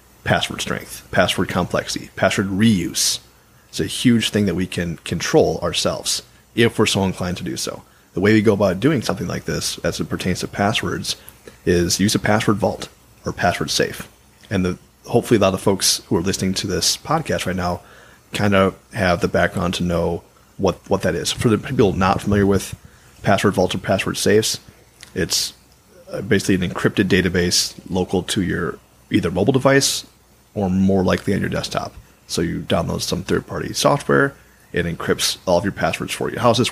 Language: English